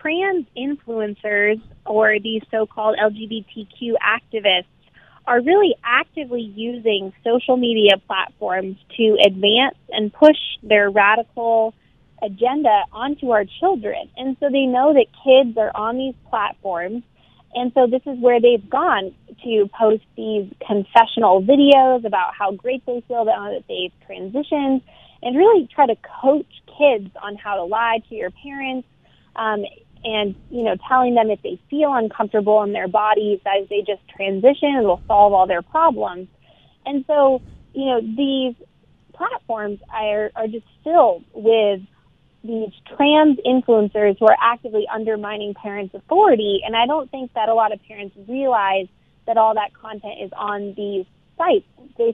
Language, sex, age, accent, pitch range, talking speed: English, female, 20-39, American, 205-260 Hz, 150 wpm